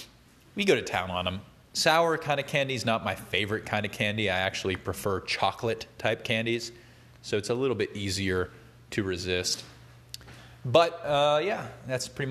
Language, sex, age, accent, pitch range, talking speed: English, male, 30-49, American, 105-125 Hz, 170 wpm